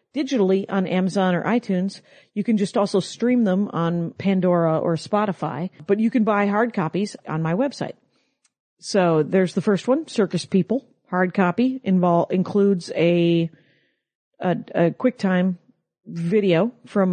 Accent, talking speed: American, 145 wpm